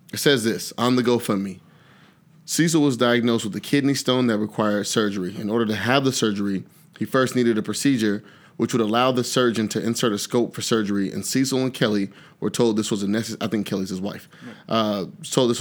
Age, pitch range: 30-49, 105-130 Hz